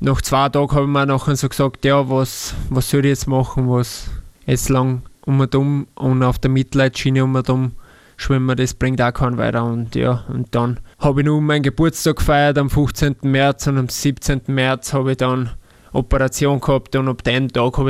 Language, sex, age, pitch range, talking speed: German, male, 20-39, 125-140 Hz, 210 wpm